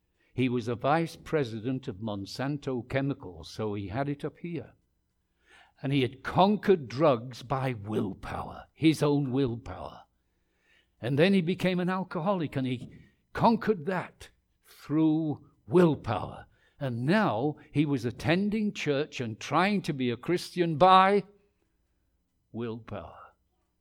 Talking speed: 125 wpm